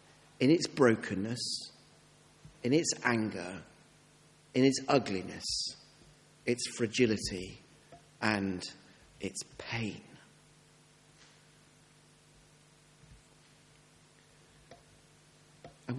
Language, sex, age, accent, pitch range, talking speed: English, male, 40-59, British, 135-180 Hz, 55 wpm